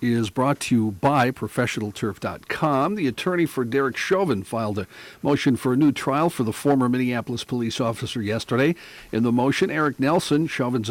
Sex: male